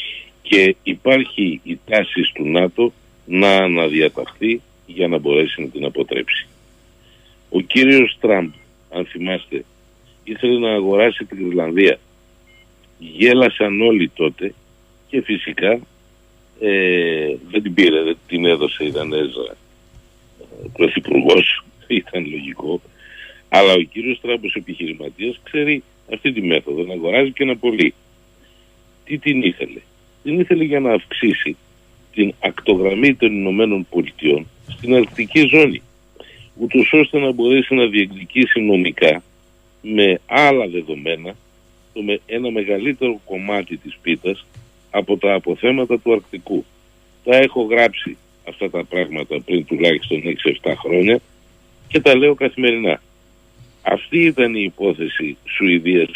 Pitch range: 90-125 Hz